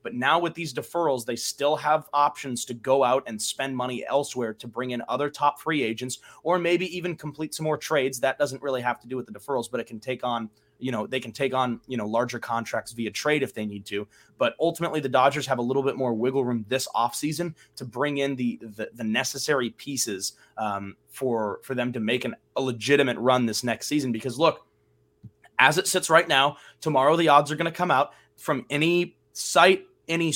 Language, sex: English, male